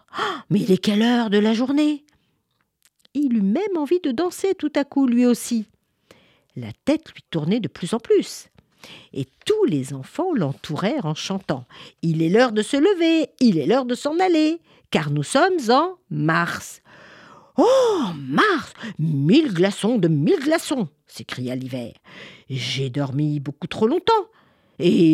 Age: 50-69